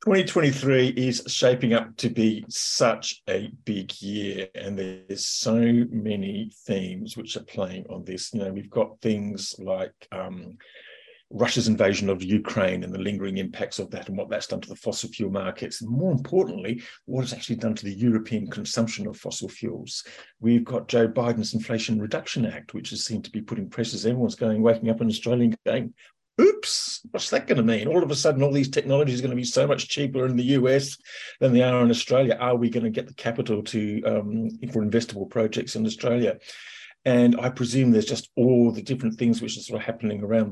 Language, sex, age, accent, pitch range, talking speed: English, male, 50-69, British, 110-135 Hz, 205 wpm